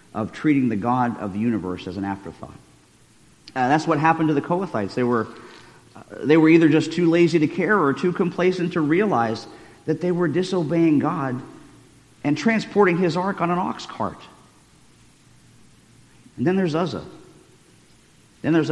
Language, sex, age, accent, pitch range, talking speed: English, male, 50-69, American, 120-170 Hz, 165 wpm